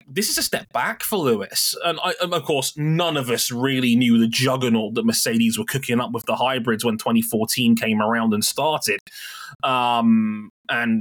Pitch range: 120-165 Hz